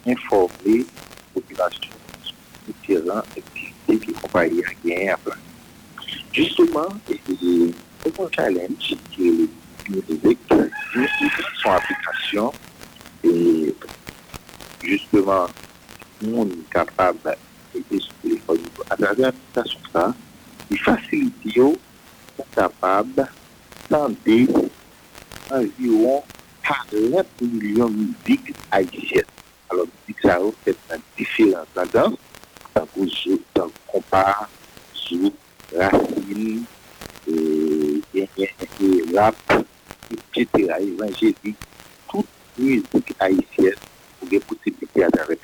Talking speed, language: 85 wpm, French